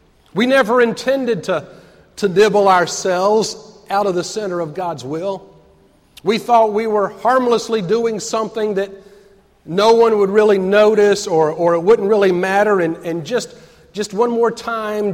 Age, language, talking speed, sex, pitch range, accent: 40-59, English, 160 wpm, male, 175-225 Hz, American